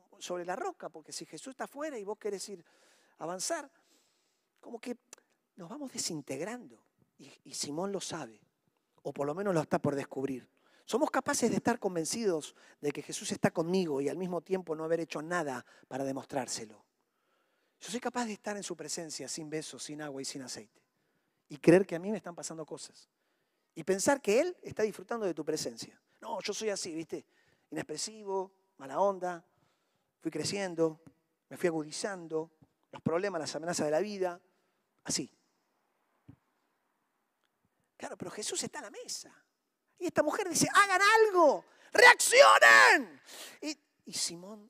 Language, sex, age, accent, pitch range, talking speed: Spanish, male, 40-59, Argentinian, 155-220 Hz, 165 wpm